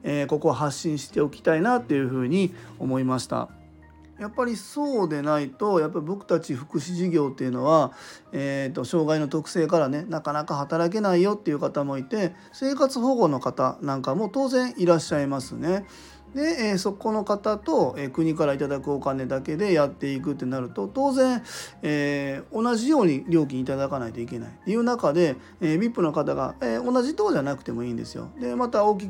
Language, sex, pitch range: Japanese, male, 140-205 Hz